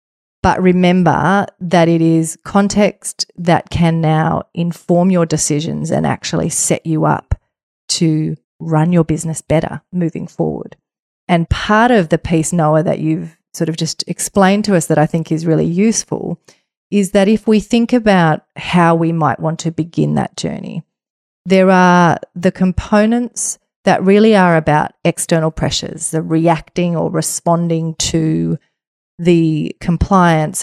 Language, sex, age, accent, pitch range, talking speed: English, female, 30-49, Australian, 155-180 Hz, 145 wpm